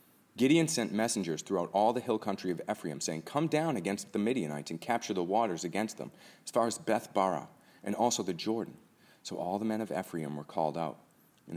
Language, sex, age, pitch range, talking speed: English, male, 40-59, 85-110 Hz, 215 wpm